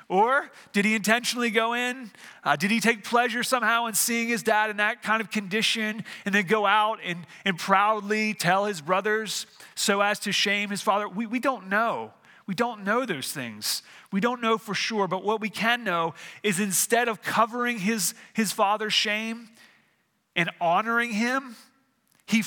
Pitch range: 175-220 Hz